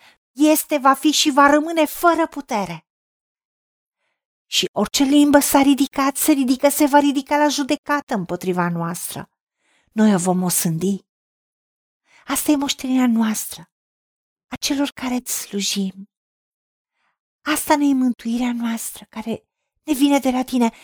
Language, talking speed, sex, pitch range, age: Romanian, 125 wpm, female, 220-290 Hz, 40-59